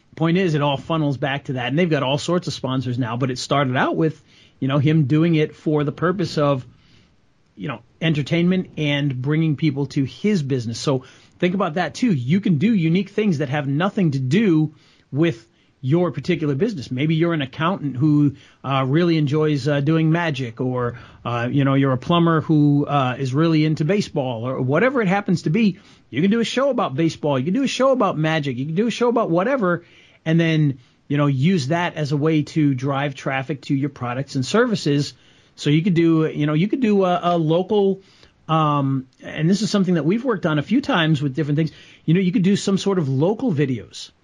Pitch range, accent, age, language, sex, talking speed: 140-170 Hz, American, 40-59, English, male, 220 wpm